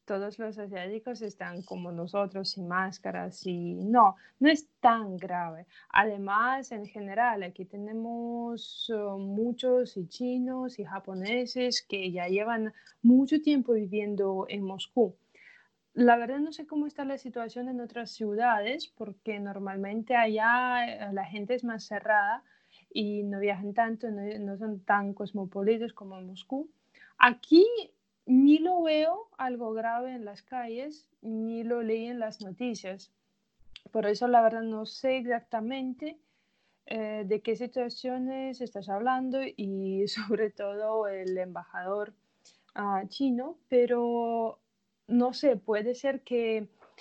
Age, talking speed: 20-39, 135 wpm